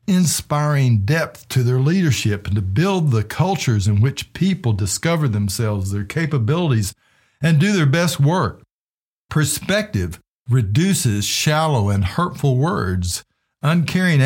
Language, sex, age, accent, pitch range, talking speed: English, male, 60-79, American, 110-160 Hz, 120 wpm